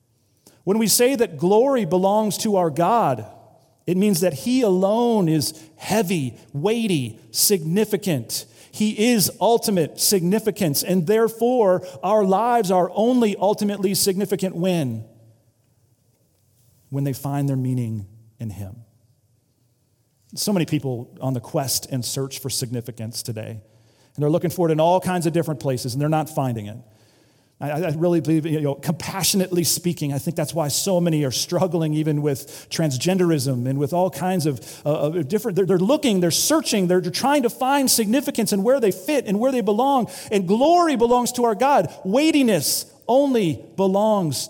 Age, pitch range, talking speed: 40-59, 125-200 Hz, 160 wpm